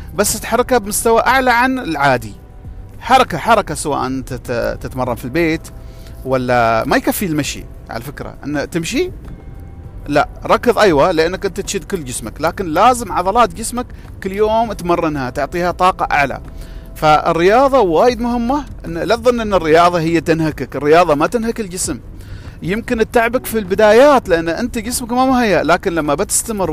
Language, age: Arabic, 40-59